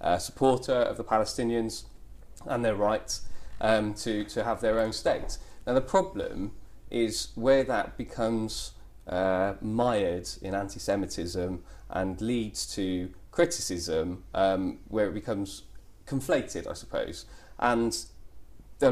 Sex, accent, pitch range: male, British, 95-120 Hz